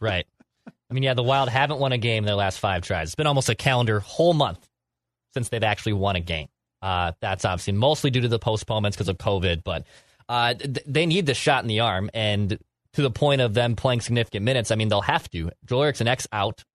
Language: English